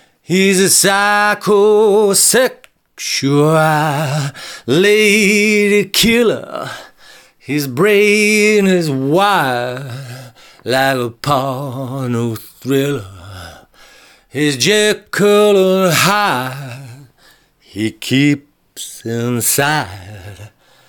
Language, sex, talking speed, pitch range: English, male, 55 wpm, 115-160 Hz